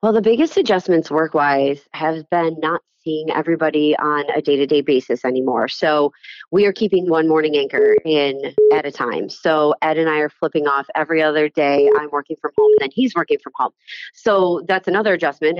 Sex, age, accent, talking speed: female, 30-49, American, 190 wpm